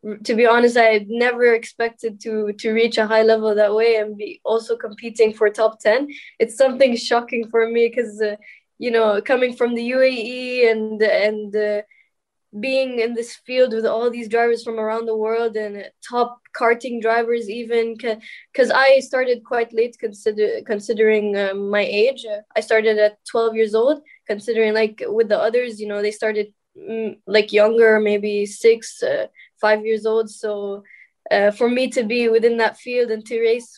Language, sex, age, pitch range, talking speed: English, female, 10-29, 215-240 Hz, 180 wpm